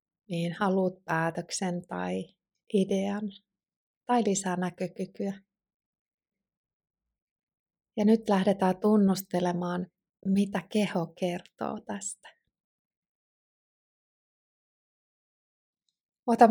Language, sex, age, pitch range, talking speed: Finnish, female, 30-49, 180-215 Hz, 60 wpm